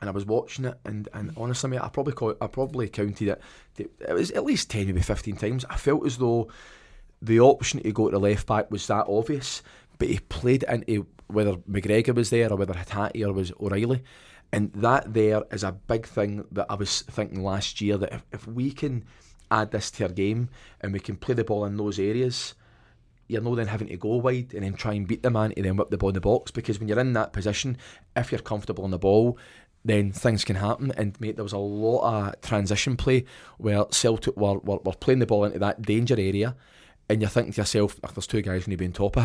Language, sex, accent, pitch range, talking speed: English, male, British, 100-115 Hz, 245 wpm